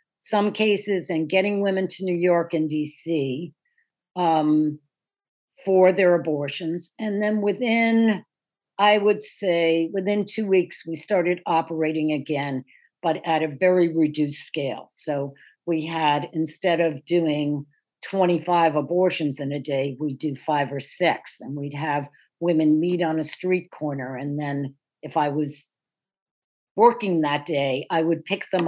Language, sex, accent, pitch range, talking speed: English, female, American, 150-185 Hz, 145 wpm